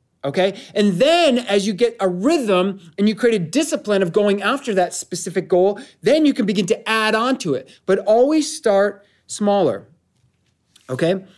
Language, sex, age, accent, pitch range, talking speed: English, male, 30-49, American, 175-220 Hz, 175 wpm